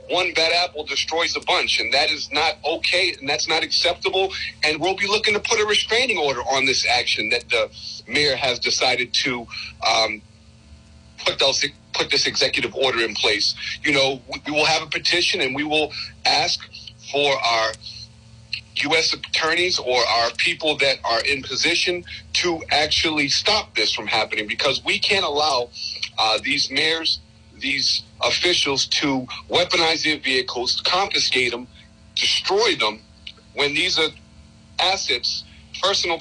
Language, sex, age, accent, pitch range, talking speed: English, male, 40-59, American, 115-160 Hz, 150 wpm